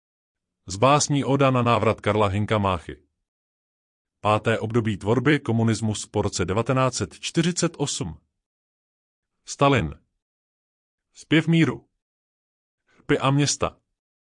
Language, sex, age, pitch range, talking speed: Czech, male, 30-49, 90-135 Hz, 85 wpm